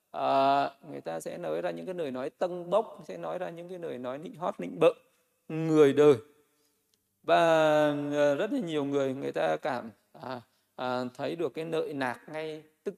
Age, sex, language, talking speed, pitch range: 20-39, male, Vietnamese, 200 wpm, 135-185 Hz